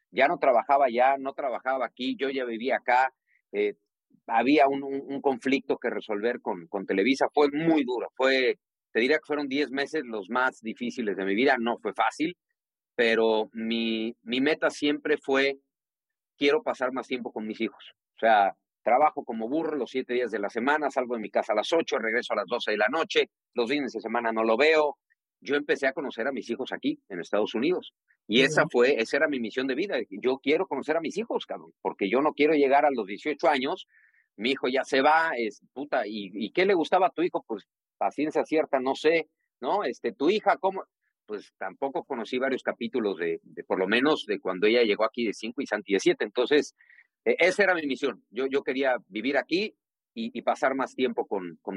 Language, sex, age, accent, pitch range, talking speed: Spanish, male, 40-59, Mexican, 125-160 Hz, 215 wpm